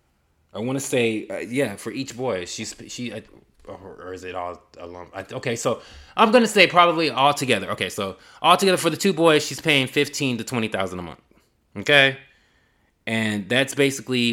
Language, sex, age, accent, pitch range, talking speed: English, male, 20-39, American, 100-135 Hz, 190 wpm